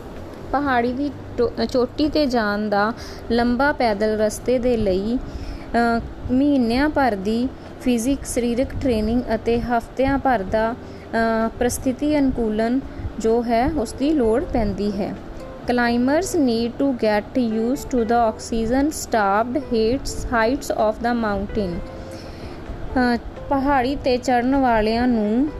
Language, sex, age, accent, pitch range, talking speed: English, female, 20-39, Indian, 225-265 Hz, 80 wpm